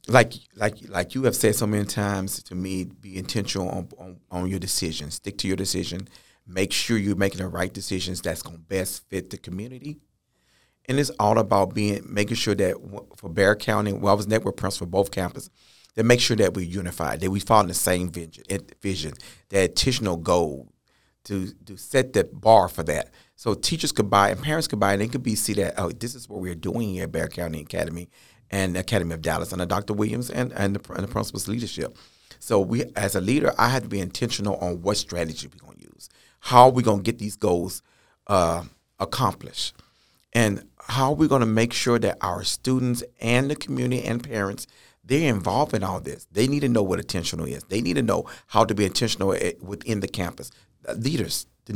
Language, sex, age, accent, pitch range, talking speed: English, male, 40-59, American, 90-115 Hz, 210 wpm